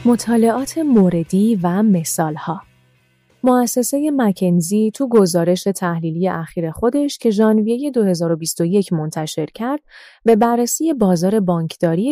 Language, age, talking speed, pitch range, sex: Persian, 30-49, 100 wpm, 165-220 Hz, female